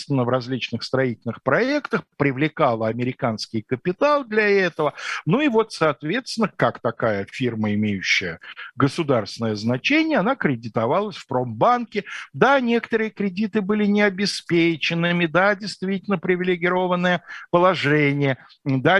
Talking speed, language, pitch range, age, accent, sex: 105 wpm, Russian, 125-165 Hz, 50-69, native, male